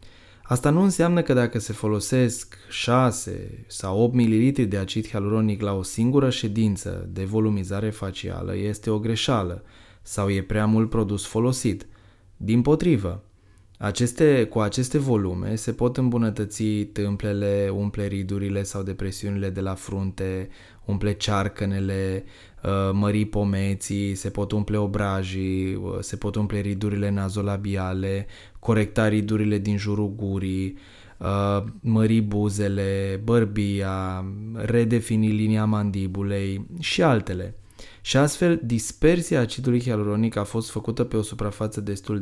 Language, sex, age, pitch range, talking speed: Romanian, male, 20-39, 100-120 Hz, 120 wpm